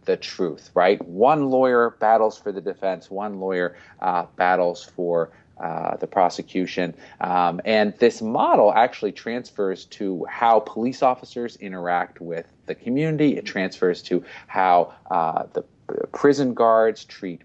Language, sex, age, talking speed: English, male, 40-59, 140 wpm